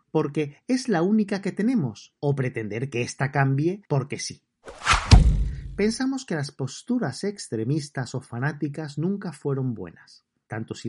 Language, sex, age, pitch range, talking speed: Spanish, male, 40-59, 120-165 Hz, 140 wpm